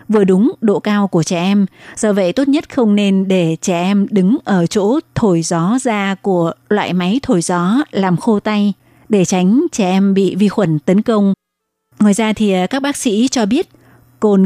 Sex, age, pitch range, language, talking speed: female, 20-39, 185-220 Hz, Vietnamese, 200 wpm